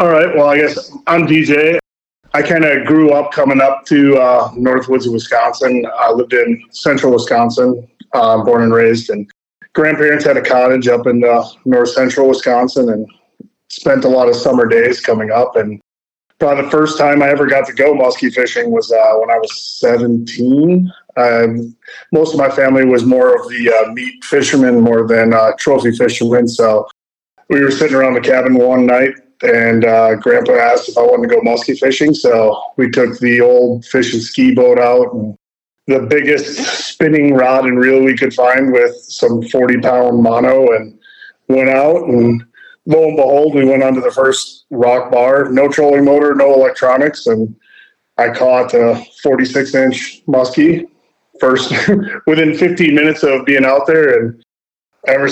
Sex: male